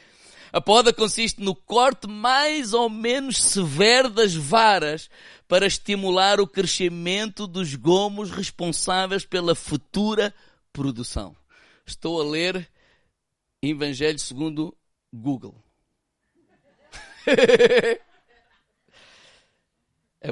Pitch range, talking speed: 150-220 Hz, 85 wpm